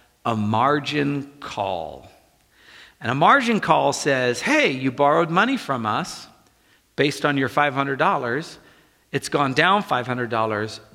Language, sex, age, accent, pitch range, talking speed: English, male, 50-69, American, 130-200 Hz, 120 wpm